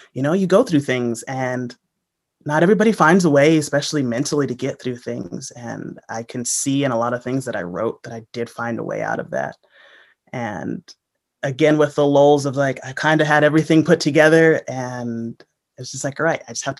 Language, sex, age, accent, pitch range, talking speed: English, male, 30-49, American, 130-155 Hz, 225 wpm